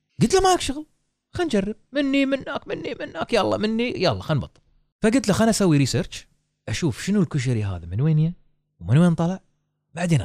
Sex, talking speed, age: male, 180 wpm, 30-49